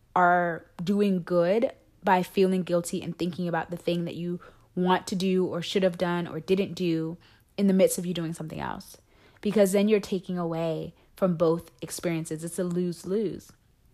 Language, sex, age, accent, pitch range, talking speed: English, female, 20-39, American, 170-200 Hz, 180 wpm